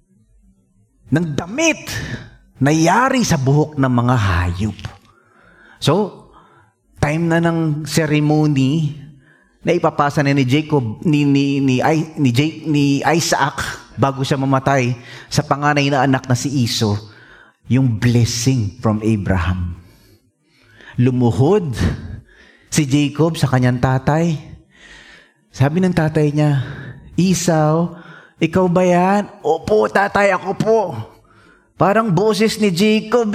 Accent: Filipino